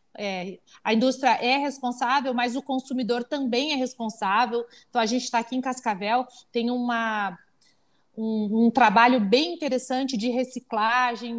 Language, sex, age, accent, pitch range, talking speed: Portuguese, female, 30-49, Brazilian, 235-300 Hz, 140 wpm